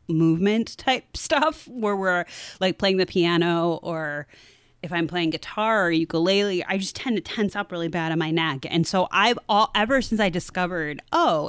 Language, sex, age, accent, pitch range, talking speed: English, female, 30-49, American, 160-210 Hz, 190 wpm